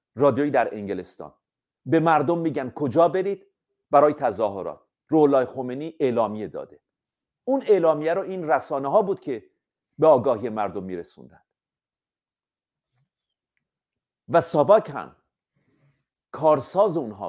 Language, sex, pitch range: Persian, male, 135-180 Hz